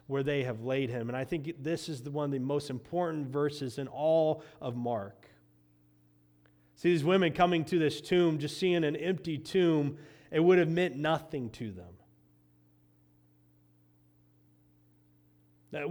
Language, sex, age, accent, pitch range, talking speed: English, male, 30-49, American, 120-195 Hz, 155 wpm